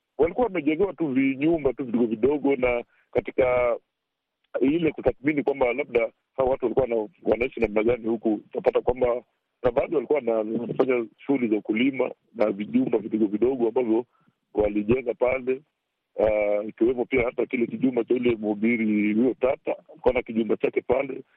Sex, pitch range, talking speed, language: male, 115-150 Hz, 145 wpm, Swahili